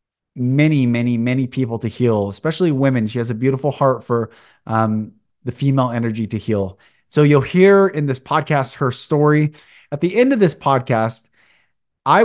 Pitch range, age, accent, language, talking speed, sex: 115-145 Hz, 30-49, American, English, 170 wpm, male